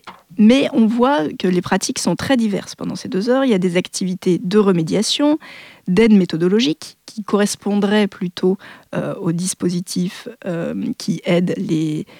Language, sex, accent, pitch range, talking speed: French, female, French, 185-245 Hz, 155 wpm